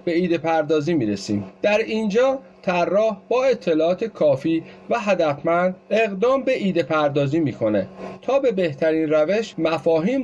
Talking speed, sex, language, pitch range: 130 wpm, male, Persian, 160-225 Hz